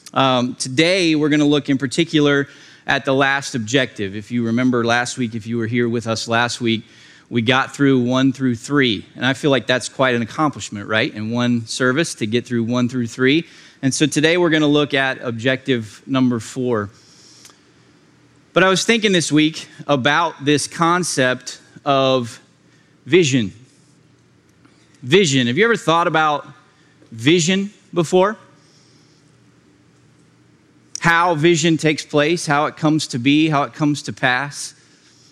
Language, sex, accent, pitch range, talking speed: English, male, American, 130-170 Hz, 160 wpm